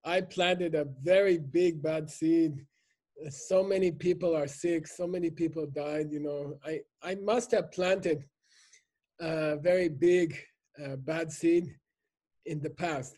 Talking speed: 145 wpm